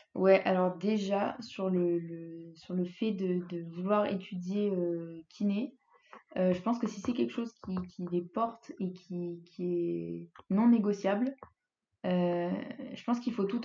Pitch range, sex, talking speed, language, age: 180-210 Hz, female, 170 wpm, French, 20-39